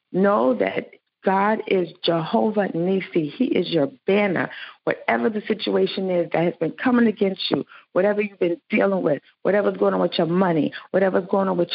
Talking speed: 180 wpm